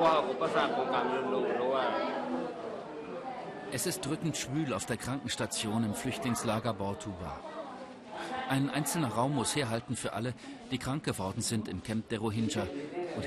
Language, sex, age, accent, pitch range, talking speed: German, male, 40-59, German, 115-145 Hz, 120 wpm